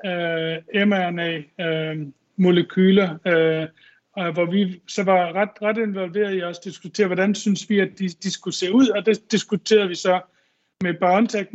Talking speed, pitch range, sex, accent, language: 140 wpm, 175-205 Hz, male, native, Danish